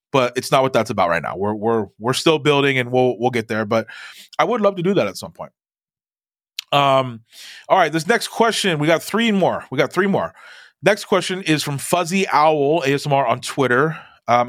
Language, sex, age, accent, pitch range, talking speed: English, male, 30-49, American, 120-150 Hz, 215 wpm